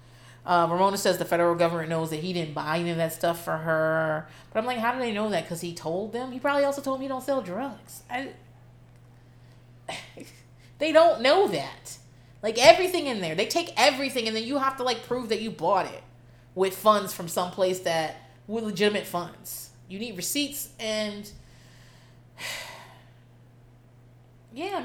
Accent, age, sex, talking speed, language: American, 30-49, female, 180 wpm, English